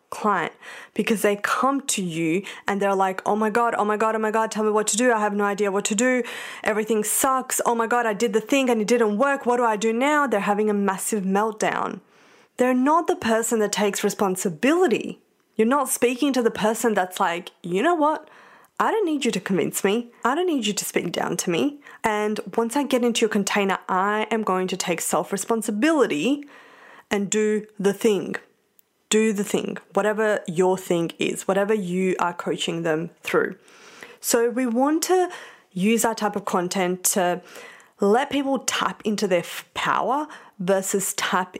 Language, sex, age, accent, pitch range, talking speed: English, female, 20-39, Australian, 200-265 Hz, 195 wpm